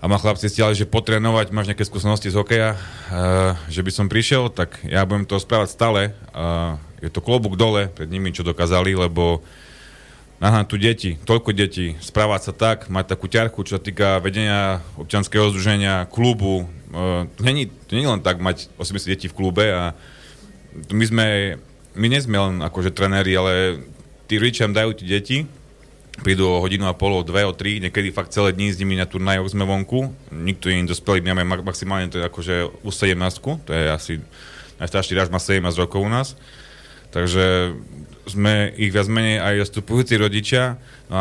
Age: 30-49